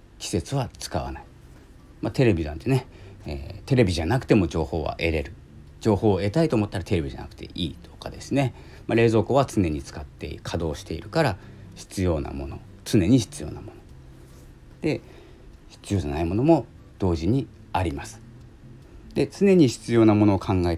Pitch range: 85-125 Hz